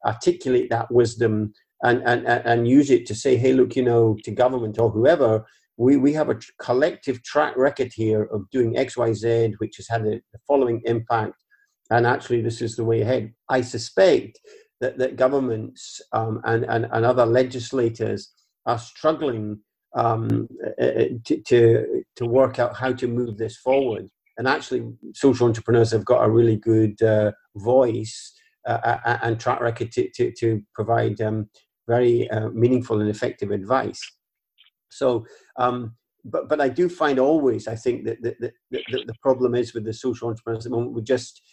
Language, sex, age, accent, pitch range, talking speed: English, male, 50-69, British, 110-130 Hz, 175 wpm